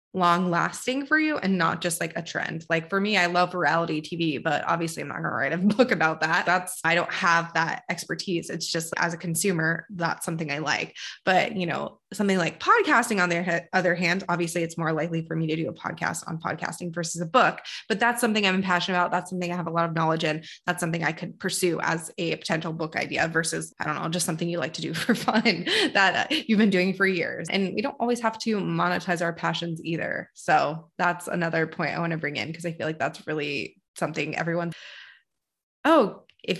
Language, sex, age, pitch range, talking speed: English, female, 20-39, 165-195 Hz, 230 wpm